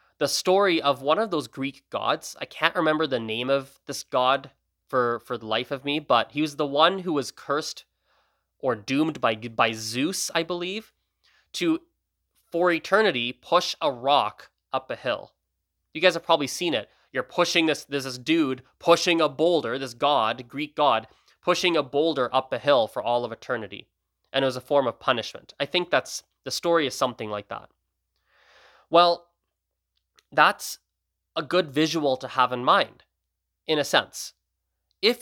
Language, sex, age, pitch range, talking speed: English, male, 20-39, 130-180 Hz, 175 wpm